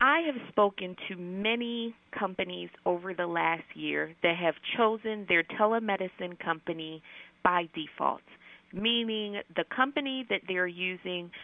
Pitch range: 175-230 Hz